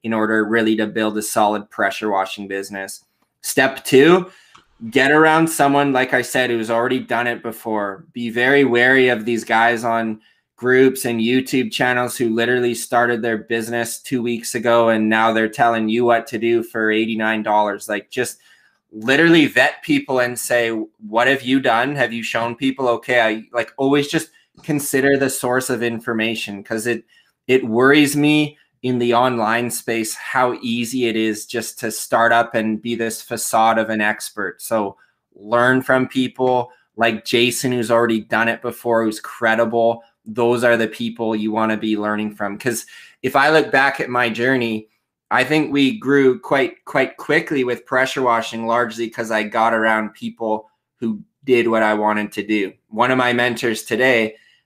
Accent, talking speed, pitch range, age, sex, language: American, 175 wpm, 110-130 Hz, 20-39, male, English